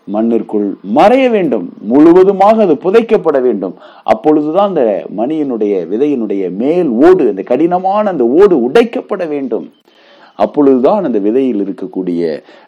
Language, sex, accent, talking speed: English, male, Indian, 140 wpm